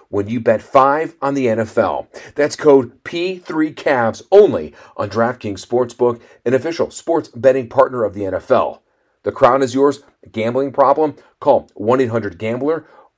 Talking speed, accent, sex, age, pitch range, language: 145 wpm, American, male, 40-59, 110-135 Hz, English